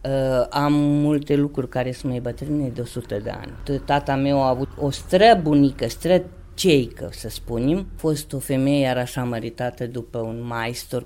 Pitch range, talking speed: 125-165 Hz, 180 wpm